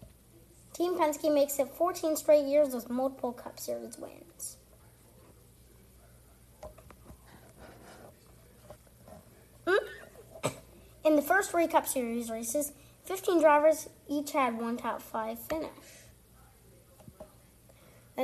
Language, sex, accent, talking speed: English, female, American, 90 wpm